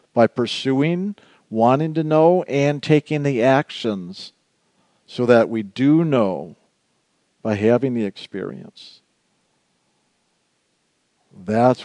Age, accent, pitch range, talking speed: 50-69, American, 115-145 Hz, 95 wpm